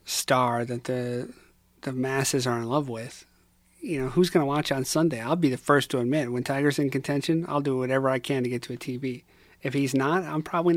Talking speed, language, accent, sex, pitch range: 235 wpm, English, American, male, 125-140 Hz